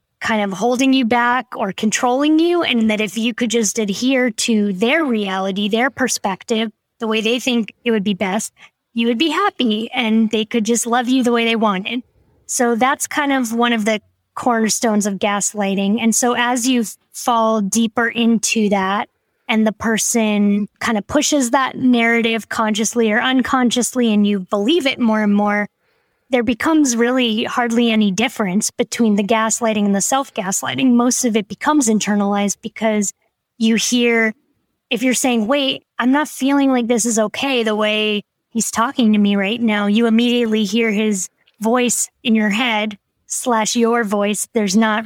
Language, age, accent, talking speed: English, 10-29, American, 175 wpm